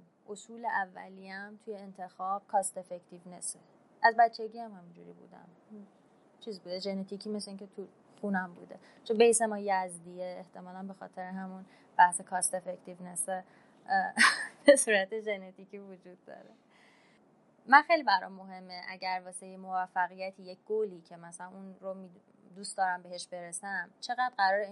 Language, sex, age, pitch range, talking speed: Persian, female, 20-39, 185-230 Hz, 140 wpm